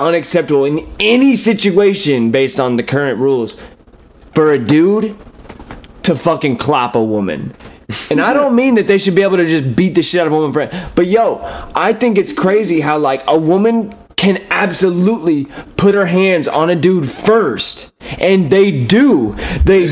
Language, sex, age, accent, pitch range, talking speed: English, male, 20-39, American, 150-220 Hz, 180 wpm